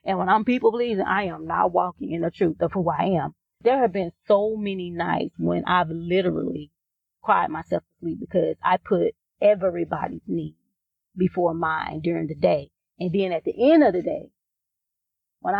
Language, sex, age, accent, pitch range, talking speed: English, female, 30-49, American, 165-205 Hz, 185 wpm